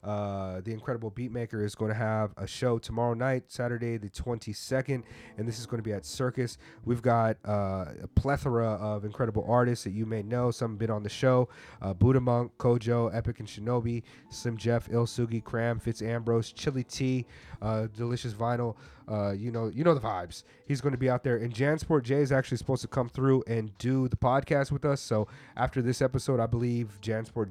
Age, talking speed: 30-49, 205 wpm